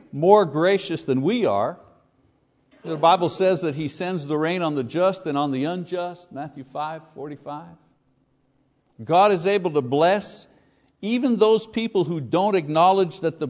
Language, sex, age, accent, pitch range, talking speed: English, male, 60-79, American, 145-190 Hz, 160 wpm